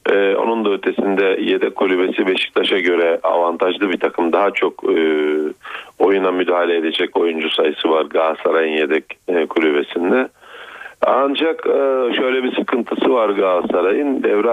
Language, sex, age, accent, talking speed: Turkish, male, 40-59, native, 130 wpm